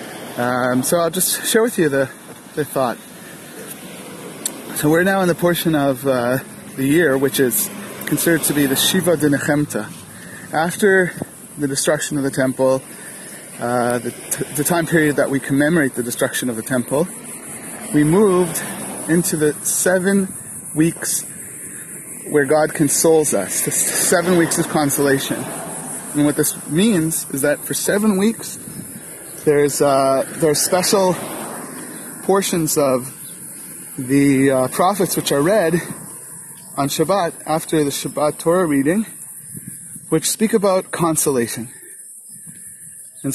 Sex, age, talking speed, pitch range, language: male, 30-49, 135 wpm, 140-175 Hz, English